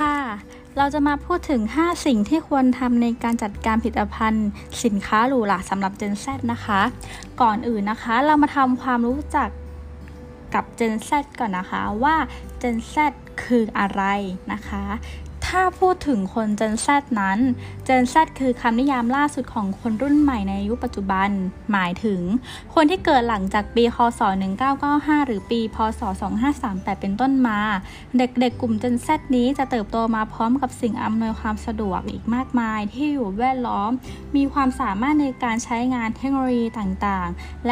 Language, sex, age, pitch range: Thai, female, 20-39, 215-265 Hz